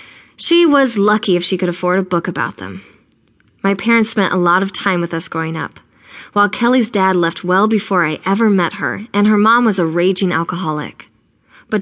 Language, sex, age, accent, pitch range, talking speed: English, female, 20-39, American, 170-215 Hz, 205 wpm